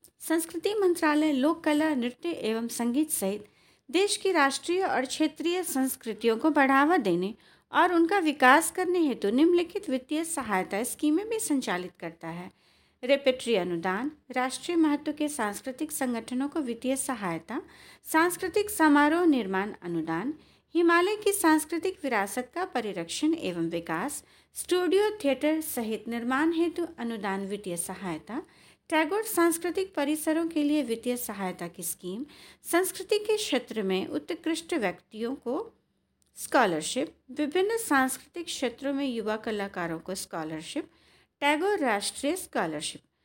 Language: Hindi